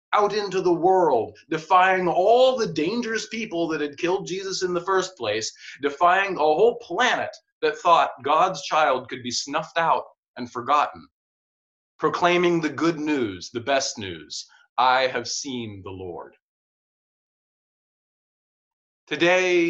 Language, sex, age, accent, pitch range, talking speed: English, male, 30-49, American, 135-185 Hz, 135 wpm